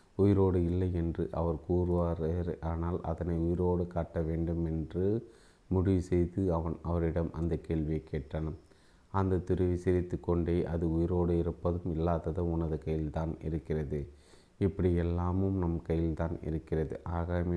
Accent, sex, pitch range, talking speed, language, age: native, male, 80-90 Hz, 125 wpm, Tamil, 30-49